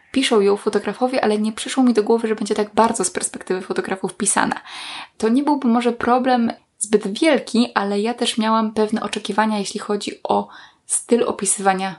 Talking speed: 175 wpm